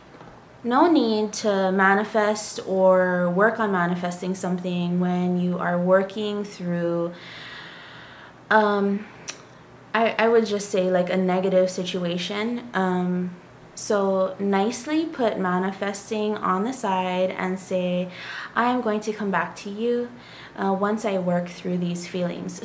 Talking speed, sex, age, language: 130 wpm, female, 20-39, English